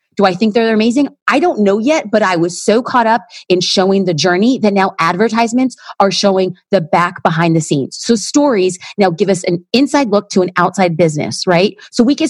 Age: 30-49